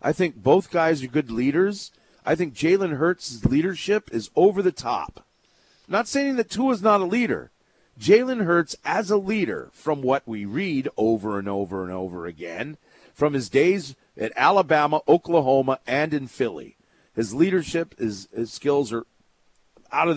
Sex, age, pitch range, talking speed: male, 40-59, 125-170 Hz, 170 wpm